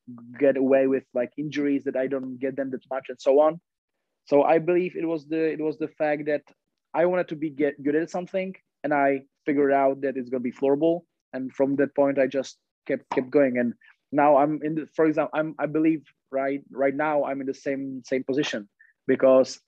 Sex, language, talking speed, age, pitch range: male, English, 215 wpm, 20-39, 135-155 Hz